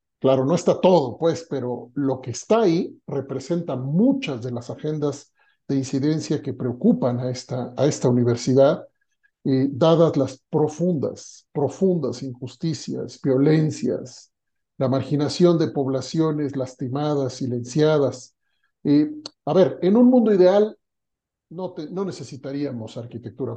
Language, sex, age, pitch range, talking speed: Spanish, male, 50-69, 135-175 Hz, 125 wpm